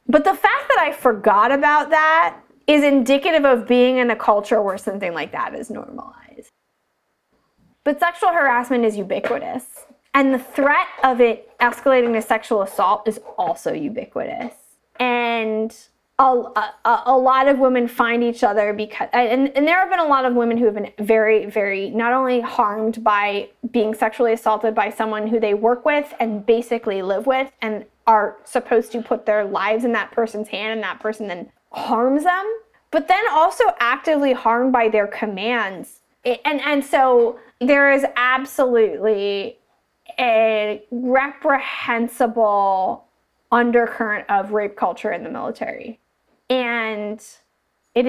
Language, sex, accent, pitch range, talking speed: English, female, American, 220-270 Hz, 150 wpm